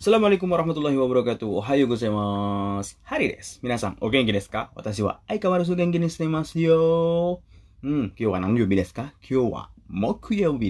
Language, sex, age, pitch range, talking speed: Indonesian, male, 20-39, 95-115 Hz, 150 wpm